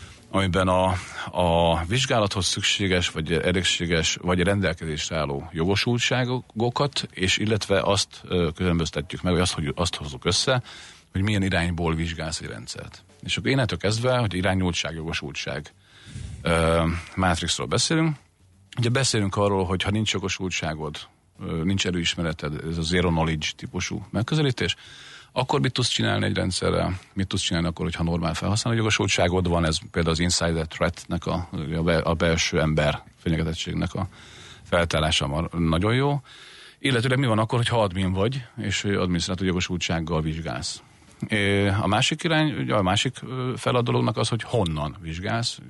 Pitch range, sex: 85-105 Hz, male